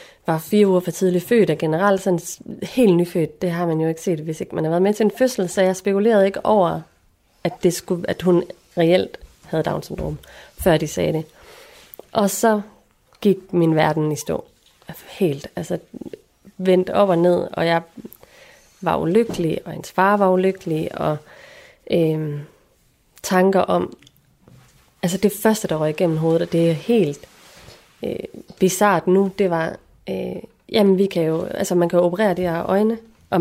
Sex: female